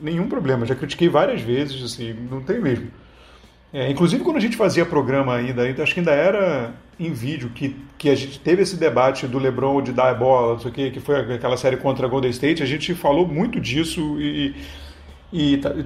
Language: Portuguese